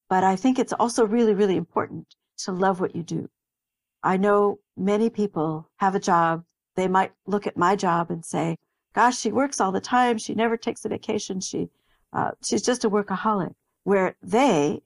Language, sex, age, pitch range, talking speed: English, female, 60-79, 180-210 Hz, 190 wpm